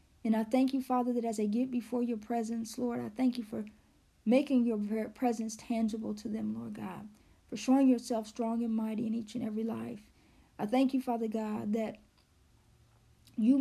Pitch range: 220-255 Hz